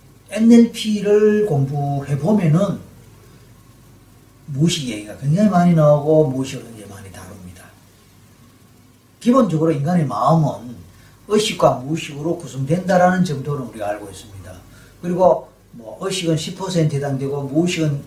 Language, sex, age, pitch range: Korean, male, 40-59, 125-175 Hz